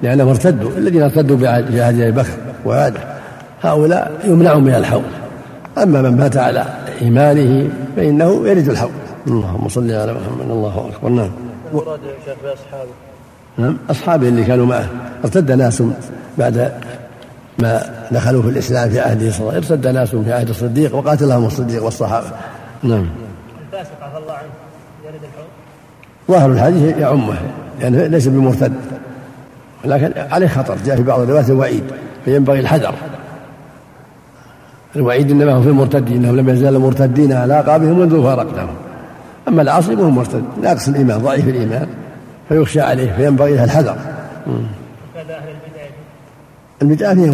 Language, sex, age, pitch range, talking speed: Arabic, male, 60-79, 120-150 Hz, 125 wpm